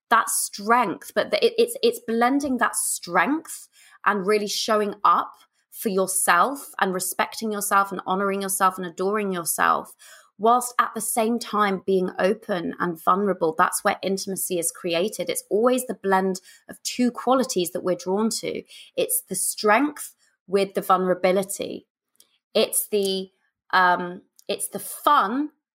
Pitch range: 180-225 Hz